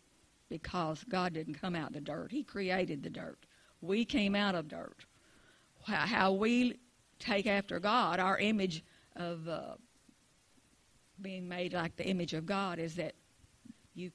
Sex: female